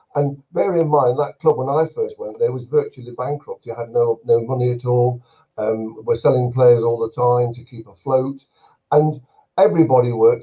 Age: 50-69